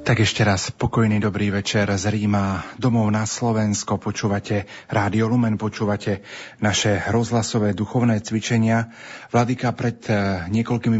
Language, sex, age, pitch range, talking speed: Slovak, male, 40-59, 100-115 Hz, 115 wpm